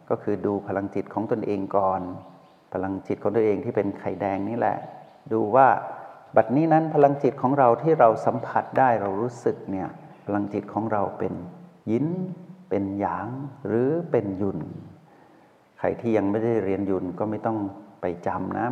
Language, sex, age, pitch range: Thai, male, 60-79, 100-135 Hz